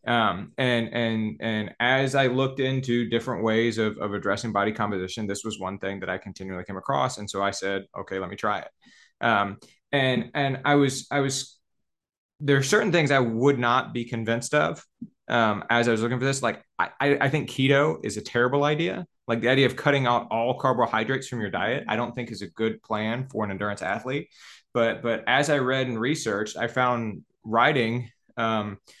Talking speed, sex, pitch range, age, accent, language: 205 wpm, male, 105-130 Hz, 20-39, American, English